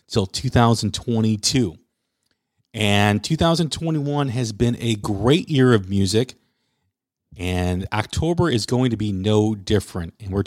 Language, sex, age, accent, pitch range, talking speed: English, male, 40-59, American, 100-125 Hz, 120 wpm